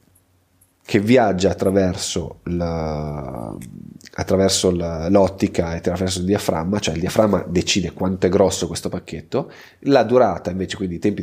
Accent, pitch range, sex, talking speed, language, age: native, 85-105 Hz, male, 140 wpm, Italian, 30-49